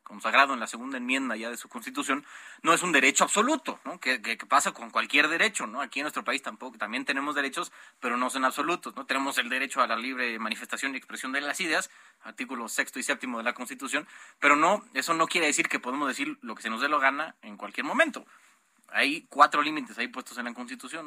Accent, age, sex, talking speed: Mexican, 30-49, male, 235 wpm